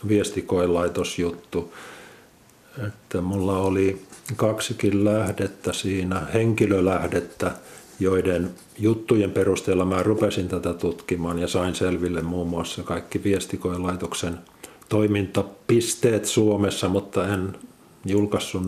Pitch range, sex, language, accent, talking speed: 95-110 Hz, male, Finnish, native, 90 wpm